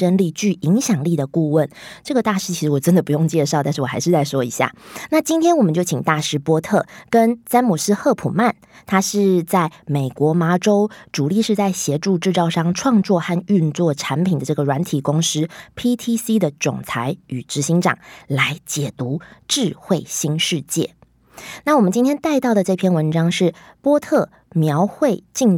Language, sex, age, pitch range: Chinese, female, 20-39, 150-205 Hz